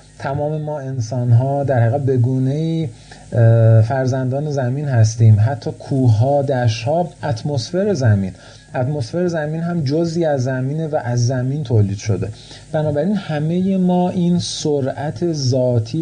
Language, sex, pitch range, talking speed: Persian, male, 115-155 Hz, 120 wpm